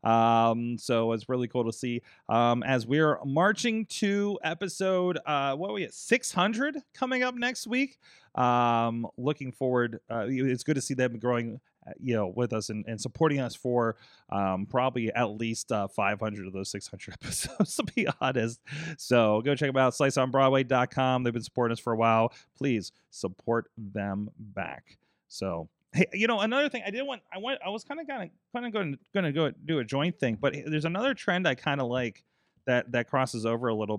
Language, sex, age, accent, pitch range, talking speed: English, male, 30-49, American, 115-155 Hz, 190 wpm